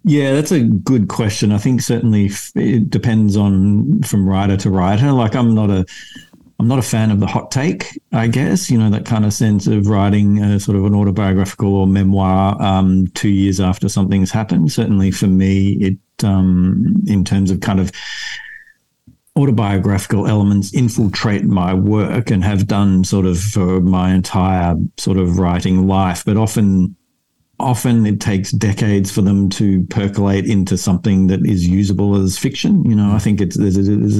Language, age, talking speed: English, 50-69, 175 wpm